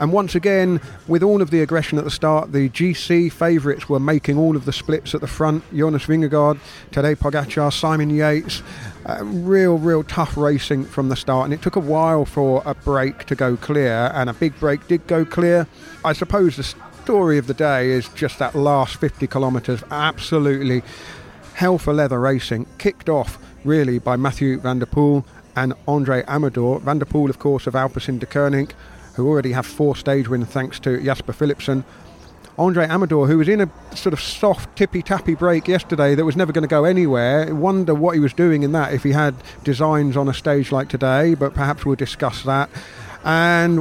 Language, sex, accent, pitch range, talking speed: English, male, British, 135-160 Hz, 200 wpm